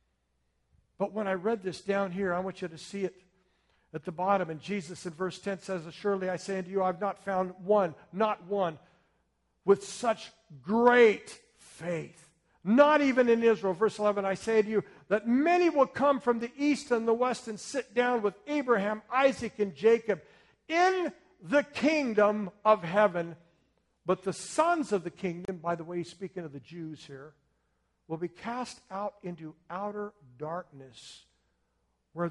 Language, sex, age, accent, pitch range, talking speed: English, male, 60-79, American, 150-210 Hz, 175 wpm